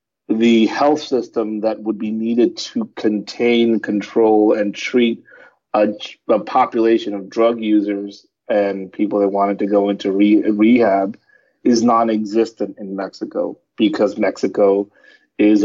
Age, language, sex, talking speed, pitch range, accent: 30-49, English, male, 125 wpm, 100-115 Hz, American